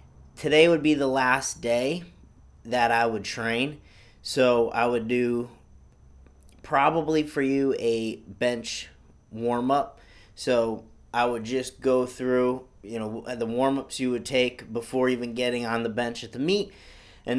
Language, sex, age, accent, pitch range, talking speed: English, male, 30-49, American, 105-125 Hz, 155 wpm